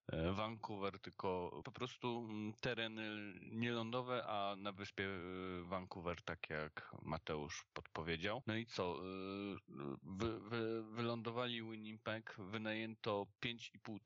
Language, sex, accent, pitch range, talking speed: Polish, male, native, 100-115 Hz, 90 wpm